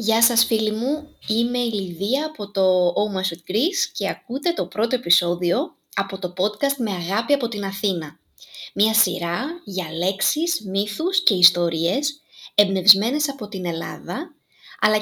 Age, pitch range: 20-39, 185-265 Hz